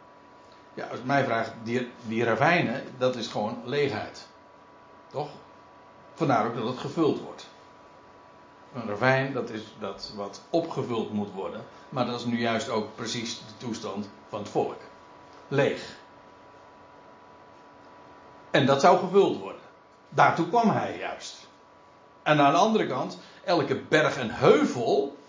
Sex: male